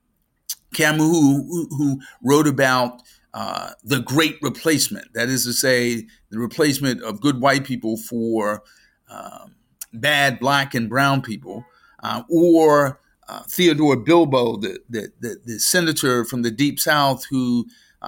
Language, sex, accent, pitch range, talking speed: English, male, American, 125-165 Hz, 135 wpm